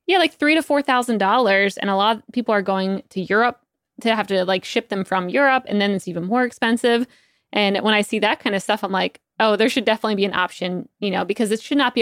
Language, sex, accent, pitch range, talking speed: English, female, American, 190-230 Hz, 260 wpm